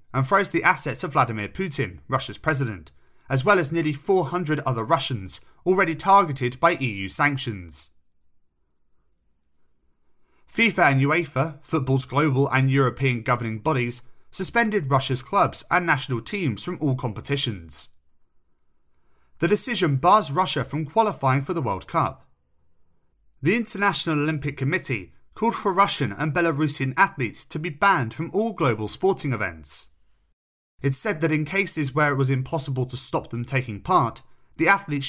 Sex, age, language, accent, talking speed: male, 30-49, English, British, 140 wpm